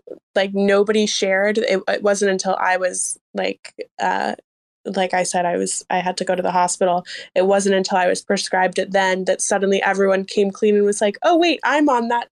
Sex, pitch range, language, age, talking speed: female, 190-215 Hz, English, 10-29, 215 wpm